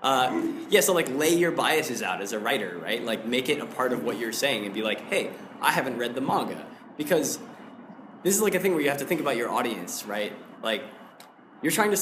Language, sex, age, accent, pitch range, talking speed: English, male, 20-39, American, 110-170 Hz, 245 wpm